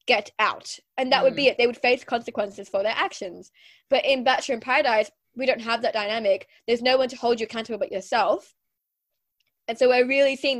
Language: English